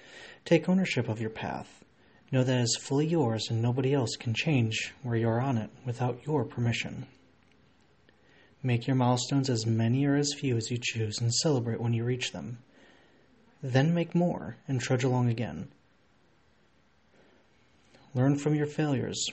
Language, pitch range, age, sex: English, 115-135 Hz, 30-49, male